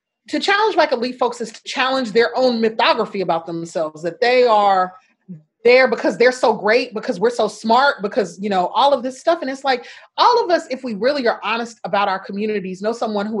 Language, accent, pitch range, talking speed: English, American, 200-270 Hz, 220 wpm